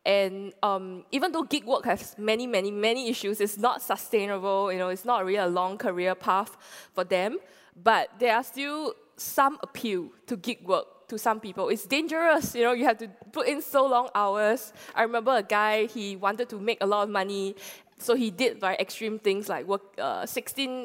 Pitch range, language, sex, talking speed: 195-245 Hz, English, female, 205 wpm